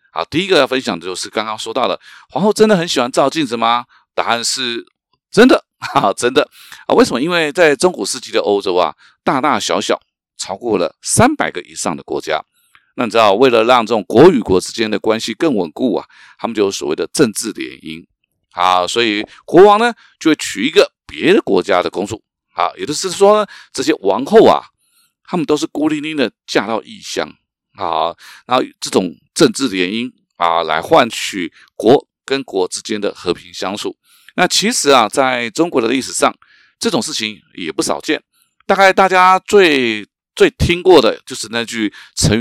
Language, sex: Chinese, male